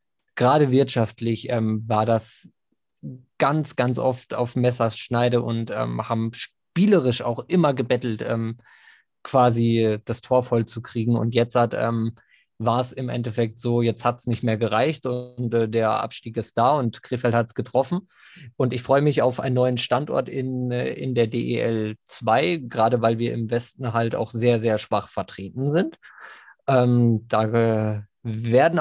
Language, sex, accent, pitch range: German, male, German, 115-130 Hz